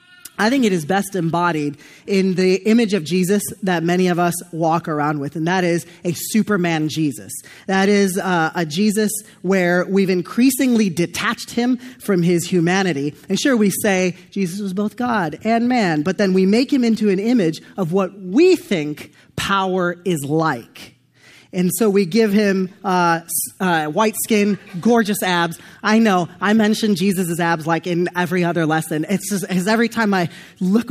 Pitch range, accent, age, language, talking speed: 180-240 Hz, American, 30-49, English, 175 wpm